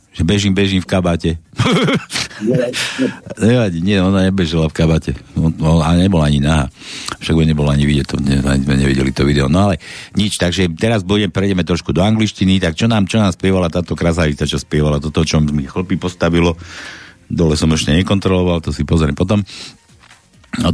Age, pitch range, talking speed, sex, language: 60-79, 80-100 Hz, 175 wpm, male, Slovak